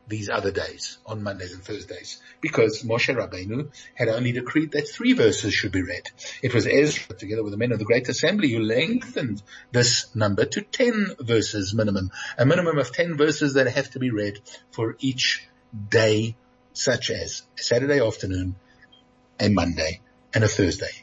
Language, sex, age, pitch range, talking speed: English, male, 50-69, 100-130 Hz, 175 wpm